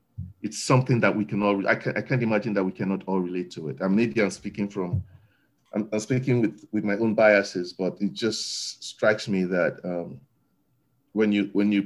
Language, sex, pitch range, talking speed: English, male, 100-130 Hz, 220 wpm